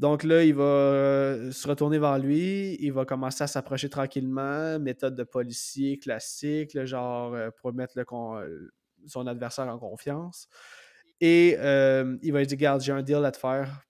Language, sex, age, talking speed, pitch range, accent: French, male, 20-39, 165 wpm, 130-160 Hz, Canadian